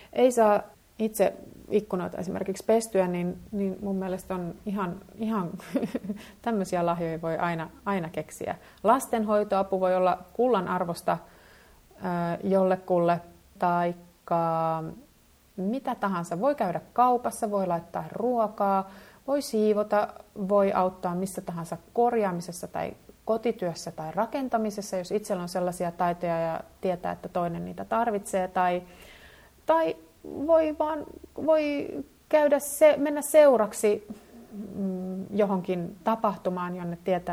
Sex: female